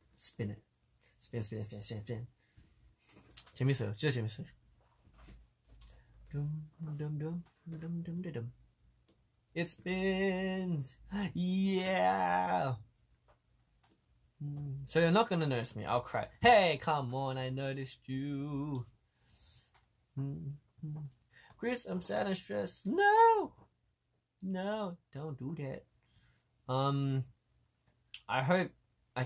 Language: Korean